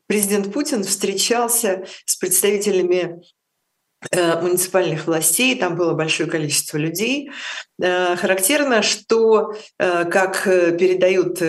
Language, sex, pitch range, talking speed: Russian, female, 160-190 Hz, 85 wpm